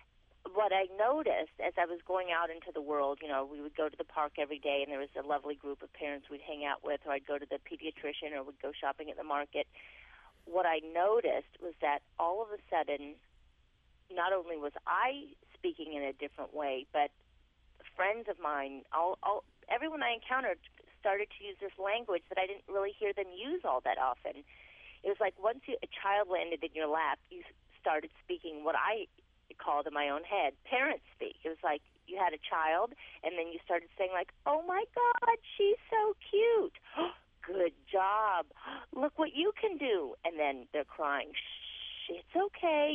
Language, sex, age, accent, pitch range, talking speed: English, female, 30-49, American, 150-230 Hz, 200 wpm